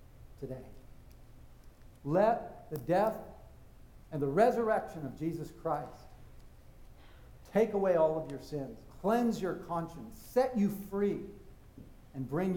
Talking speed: 115 wpm